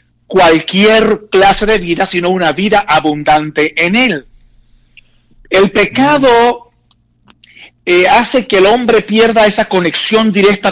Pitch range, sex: 170-215 Hz, male